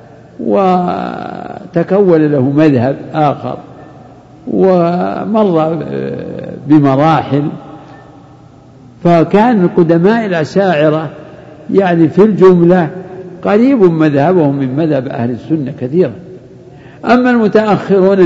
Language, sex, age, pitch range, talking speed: Arabic, male, 60-79, 130-185 Hz, 70 wpm